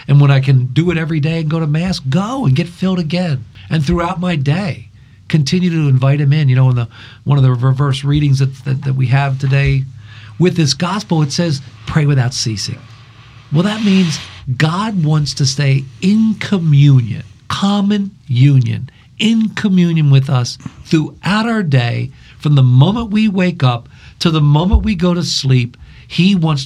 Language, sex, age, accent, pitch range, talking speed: English, male, 50-69, American, 125-175 Hz, 185 wpm